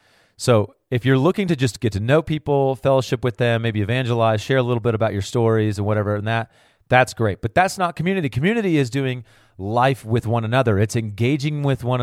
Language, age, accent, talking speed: English, 30-49, American, 215 wpm